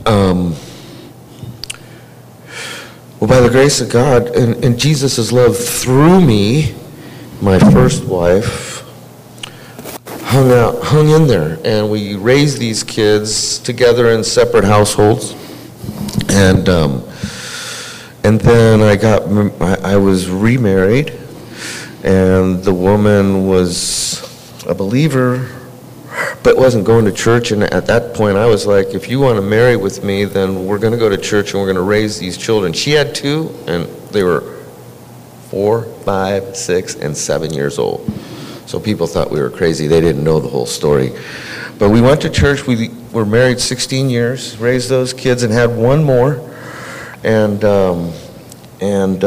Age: 50-69